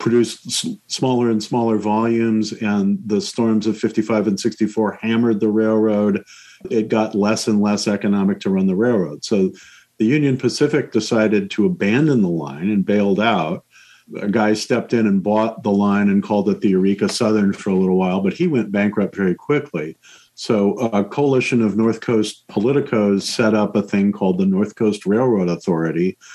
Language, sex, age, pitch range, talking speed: English, male, 50-69, 100-120 Hz, 180 wpm